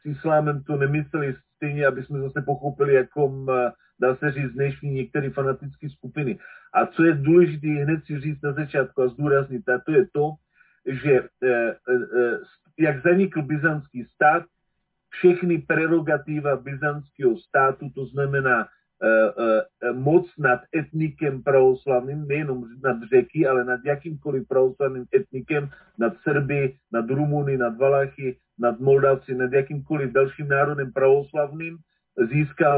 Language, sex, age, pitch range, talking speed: Slovak, male, 40-59, 135-155 Hz, 125 wpm